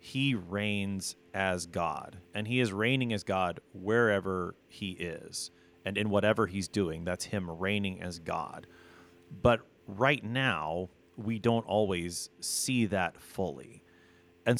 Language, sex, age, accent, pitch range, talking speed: English, male, 30-49, American, 85-115 Hz, 135 wpm